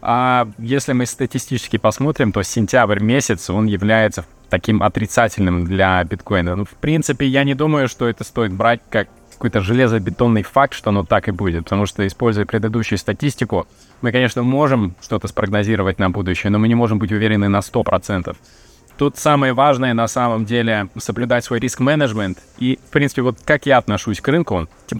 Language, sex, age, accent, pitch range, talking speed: Russian, male, 20-39, native, 100-120 Hz, 175 wpm